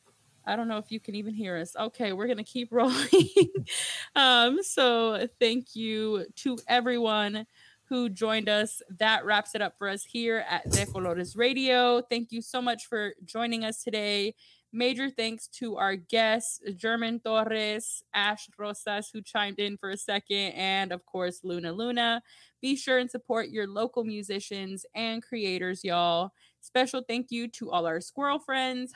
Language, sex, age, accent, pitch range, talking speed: English, female, 20-39, American, 200-245 Hz, 170 wpm